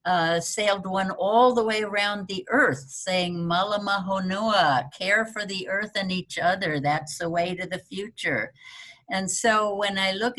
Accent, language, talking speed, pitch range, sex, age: American, English, 170 wpm, 170-220 Hz, female, 60-79